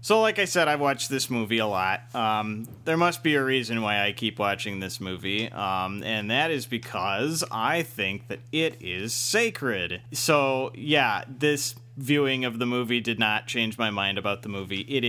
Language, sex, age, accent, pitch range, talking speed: English, male, 30-49, American, 105-130 Hz, 195 wpm